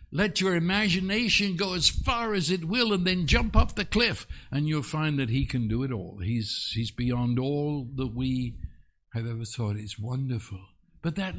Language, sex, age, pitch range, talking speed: English, male, 60-79, 120-165 Hz, 195 wpm